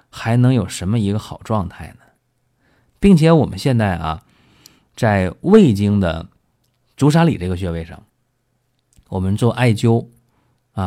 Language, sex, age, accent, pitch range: Chinese, male, 20-39, native, 95-125 Hz